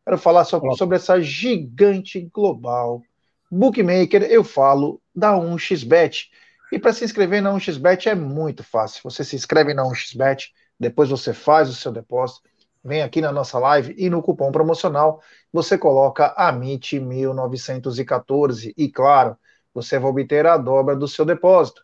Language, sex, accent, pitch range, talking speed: Portuguese, male, Brazilian, 145-195 Hz, 145 wpm